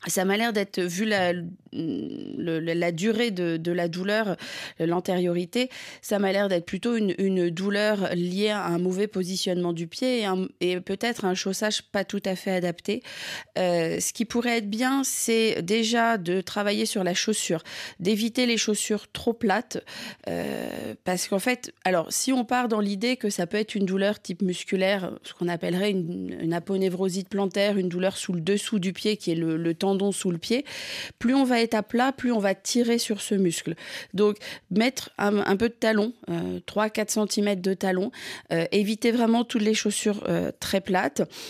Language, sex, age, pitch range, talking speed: French, female, 30-49, 180-225 Hz, 190 wpm